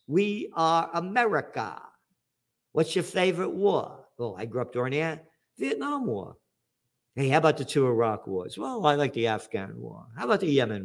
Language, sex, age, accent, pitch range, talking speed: English, male, 50-69, American, 125-170 Hz, 175 wpm